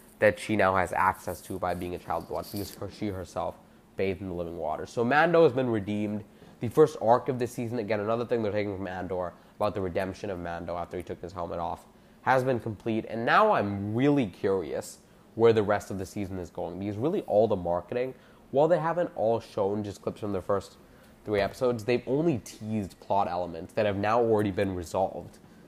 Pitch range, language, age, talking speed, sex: 95-115 Hz, English, 20-39, 220 wpm, male